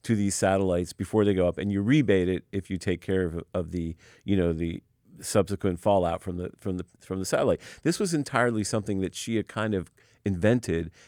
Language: English